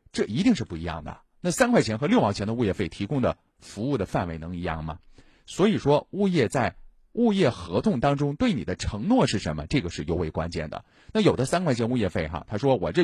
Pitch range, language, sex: 85-135 Hz, Chinese, male